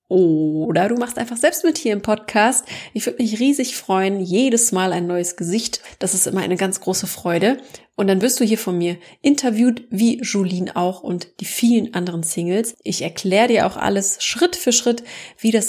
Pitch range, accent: 180-230 Hz, German